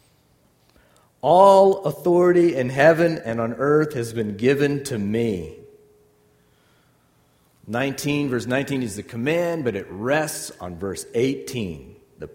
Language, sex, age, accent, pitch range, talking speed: English, male, 50-69, American, 95-145 Hz, 120 wpm